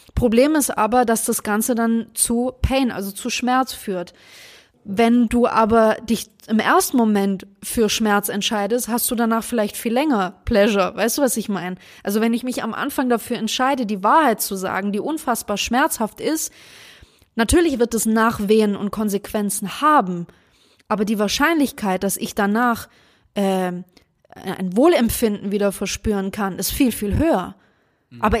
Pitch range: 210-255 Hz